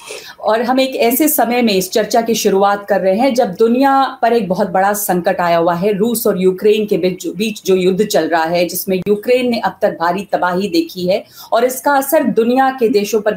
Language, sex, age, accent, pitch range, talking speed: English, female, 40-59, Indian, 195-245 Hz, 220 wpm